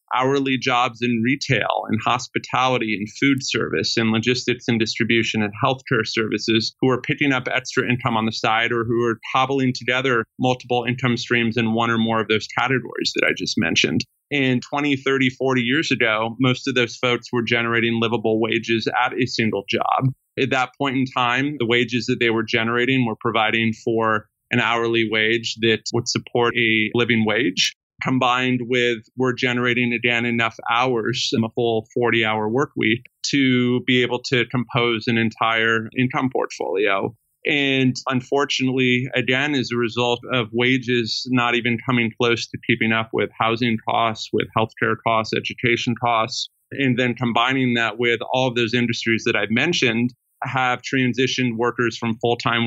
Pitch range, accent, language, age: 115-130 Hz, American, English, 30-49